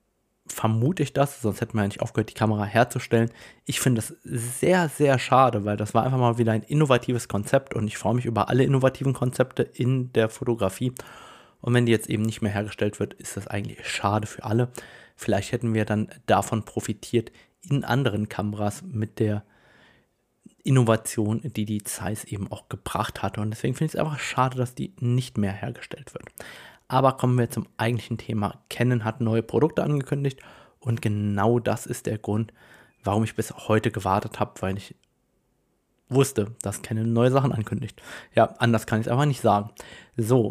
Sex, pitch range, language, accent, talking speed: male, 110-130 Hz, German, German, 185 wpm